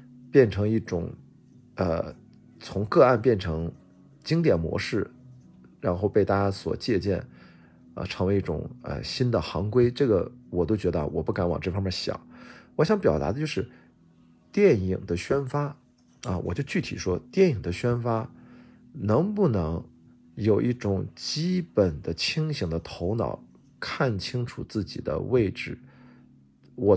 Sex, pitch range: male, 85-125 Hz